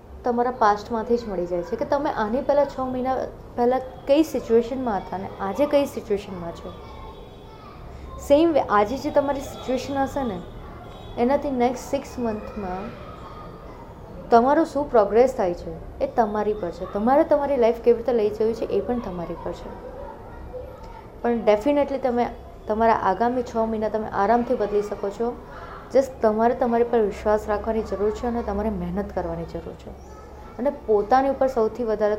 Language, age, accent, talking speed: Gujarati, 20-39, native, 160 wpm